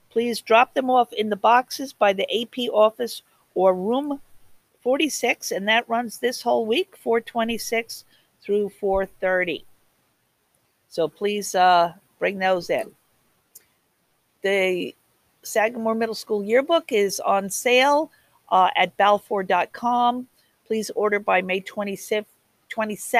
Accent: American